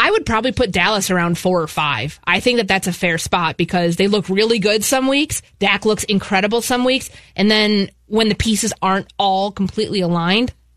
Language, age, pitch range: English, 20-39, 170-210 Hz